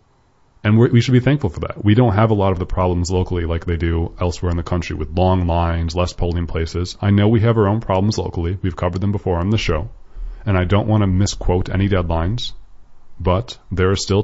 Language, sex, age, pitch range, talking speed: English, male, 30-49, 85-105 Hz, 235 wpm